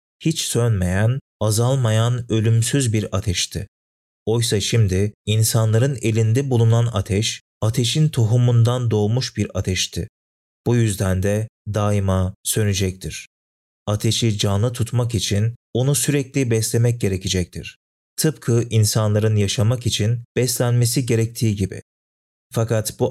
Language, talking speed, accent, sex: Turkish, 100 wpm, native, male